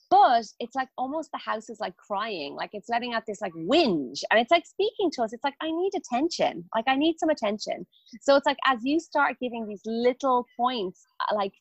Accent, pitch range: Irish, 205-270 Hz